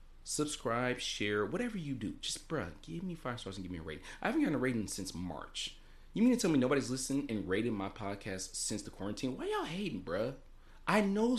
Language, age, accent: English, 30-49, American